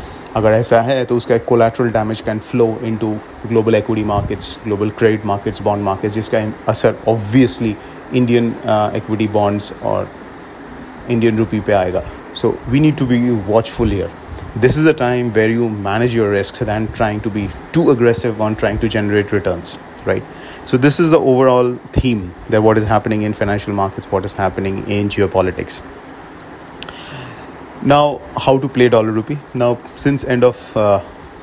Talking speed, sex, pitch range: 160 wpm, male, 105-120 Hz